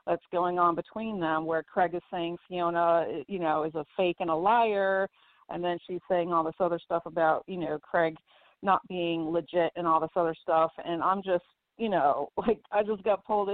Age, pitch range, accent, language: 40-59, 165-190 Hz, American, English